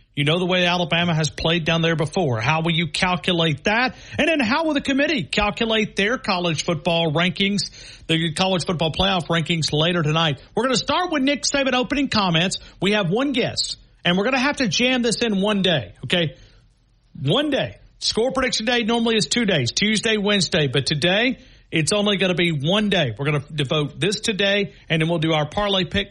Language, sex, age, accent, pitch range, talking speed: English, male, 50-69, American, 145-195 Hz, 210 wpm